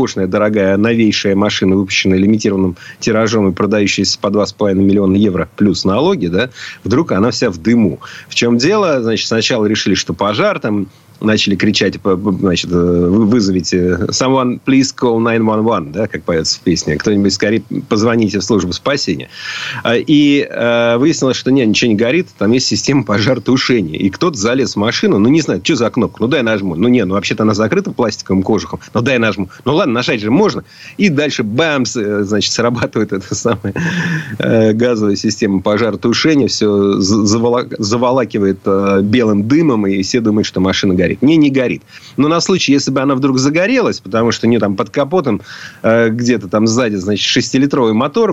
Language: Russian